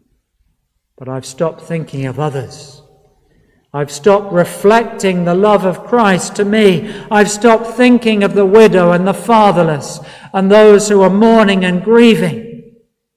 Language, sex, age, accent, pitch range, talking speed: English, male, 50-69, British, 155-210 Hz, 140 wpm